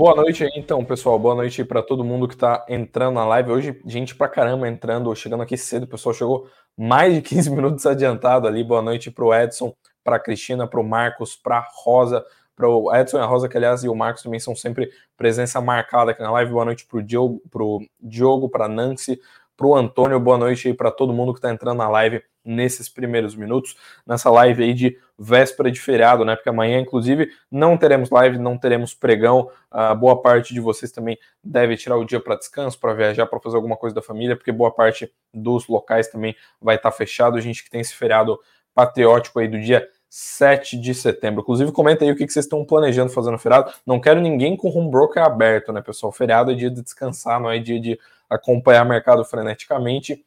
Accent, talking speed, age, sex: Brazilian, 210 wpm, 20-39, male